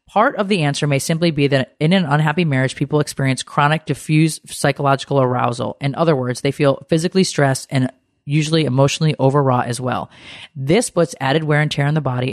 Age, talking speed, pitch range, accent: 30-49, 195 wpm, 135-165 Hz, American